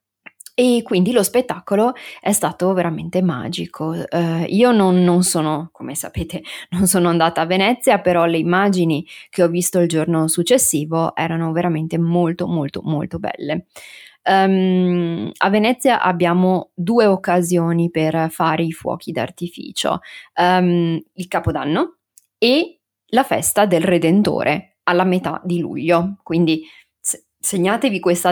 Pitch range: 170-200 Hz